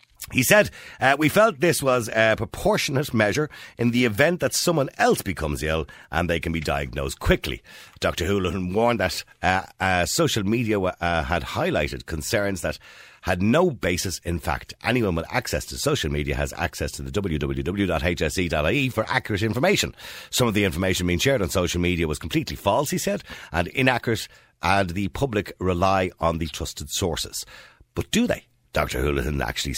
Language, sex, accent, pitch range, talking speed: English, male, Irish, 80-115 Hz, 175 wpm